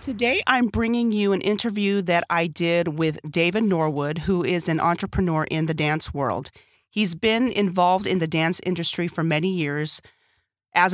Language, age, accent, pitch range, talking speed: English, 30-49, American, 160-200 Hz, 170 wpm